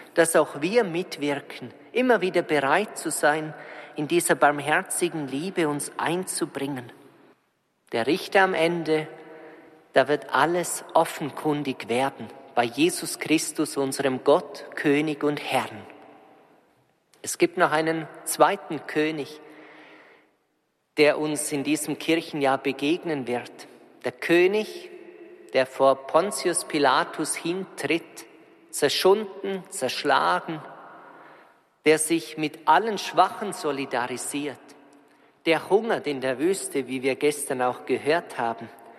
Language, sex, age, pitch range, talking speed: German, male, 40-59, 145-180 Hz, 110 wpm